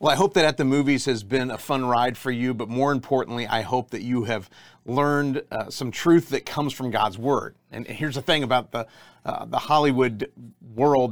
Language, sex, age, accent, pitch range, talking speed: English, male, 40-59, American, 115-145 Hz, 220 wpm